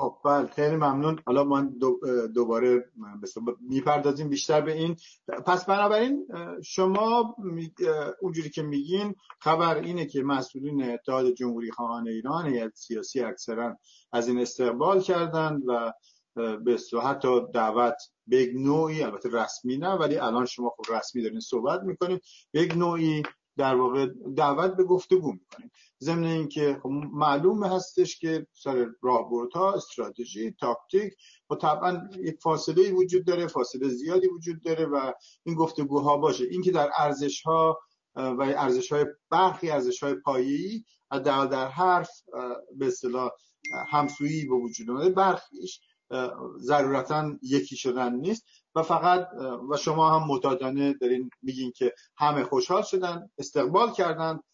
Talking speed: 130 wpm